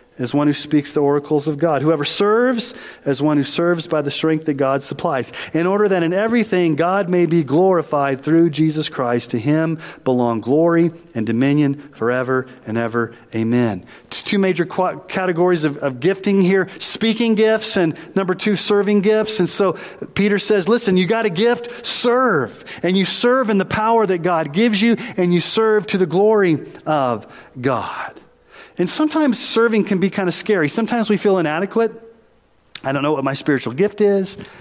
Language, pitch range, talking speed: English, 145-210 Hz, 180 wpm